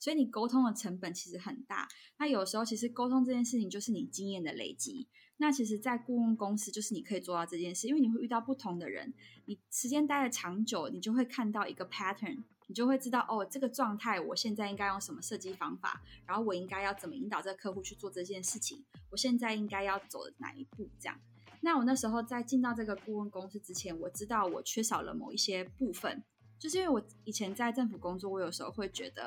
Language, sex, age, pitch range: Chinese, female, 20-39, 190-245 Hz